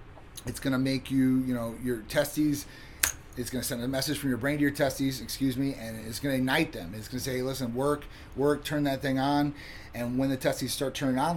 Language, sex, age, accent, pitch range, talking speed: English, male, 30-49, American, 115-145 Hz, 225 wpm